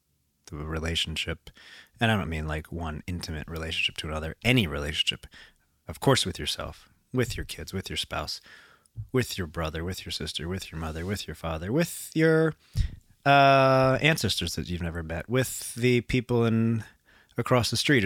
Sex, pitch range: male, 80-120 Hz